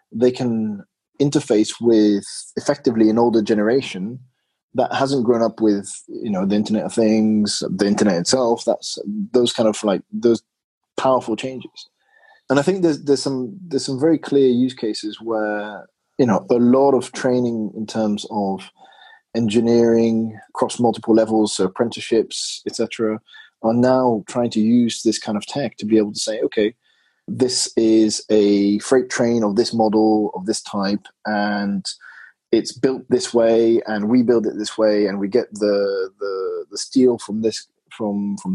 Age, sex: 20-39, male